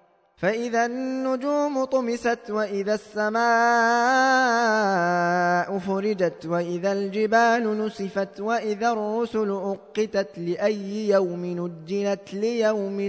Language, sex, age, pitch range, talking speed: Arabic, male, 20-39, 210-260 Hz, 75 wpm